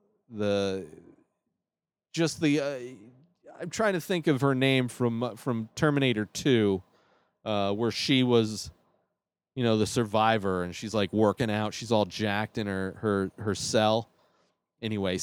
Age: 30-49